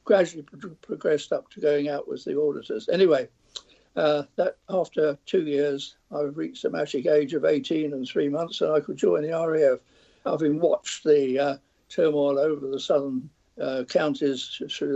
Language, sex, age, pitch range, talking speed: English, male, 60-79, 145-225 Hz, 170 wpm